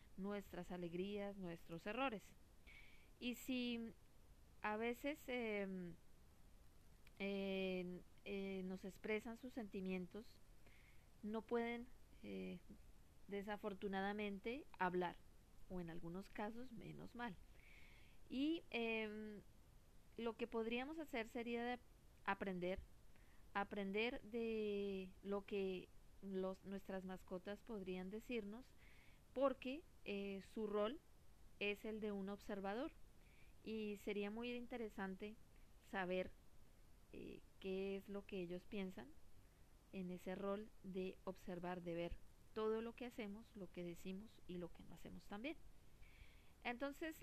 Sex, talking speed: female, 105 wpm